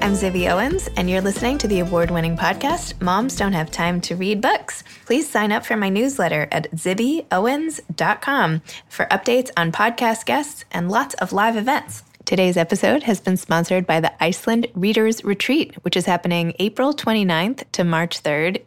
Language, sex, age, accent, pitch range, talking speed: English, female, 20-39, American, 165-210 Hz, 170 wpm